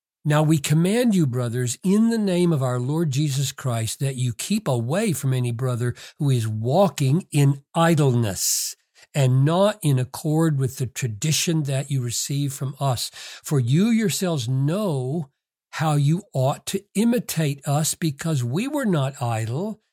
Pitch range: 130-190 Hz